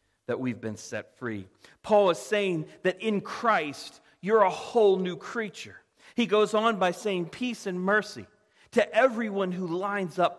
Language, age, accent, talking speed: English, 40-59, American, 170 wpm